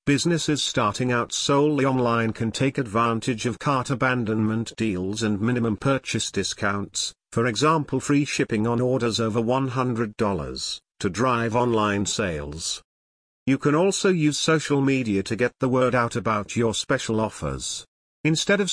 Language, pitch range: English, 110-140 Hz